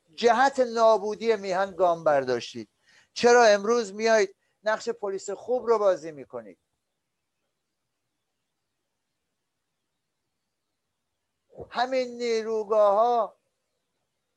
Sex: male